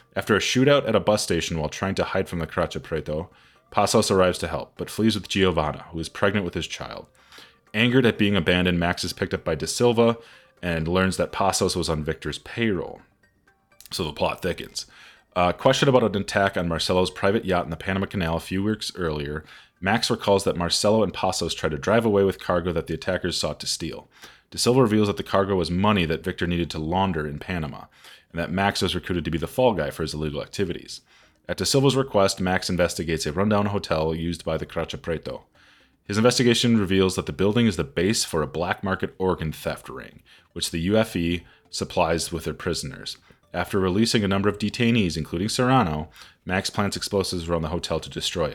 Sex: male